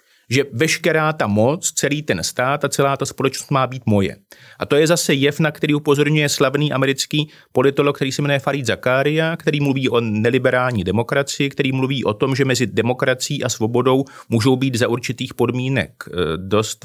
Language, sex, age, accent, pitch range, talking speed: Czech, male, 30-49, native, 115-145 Hz, 180 wpm